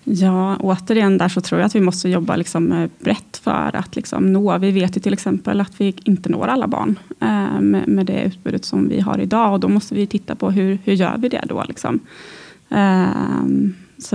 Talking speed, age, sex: 200 wpm, 20-39, female